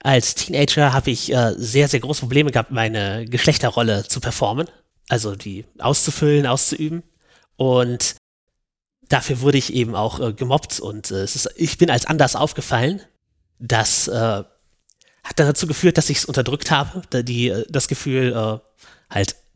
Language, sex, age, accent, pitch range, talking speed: German, male, 30-49, German, 115-145 Hz, 155 wpm